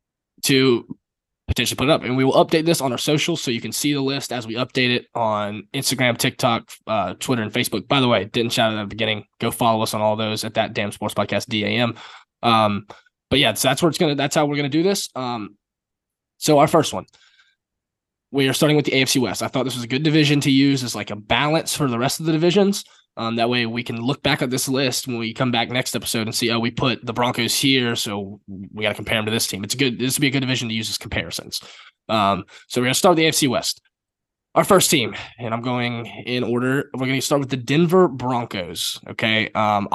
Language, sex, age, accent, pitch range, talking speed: English, male, 20-39, American, 110-135 Hz, 255 wpm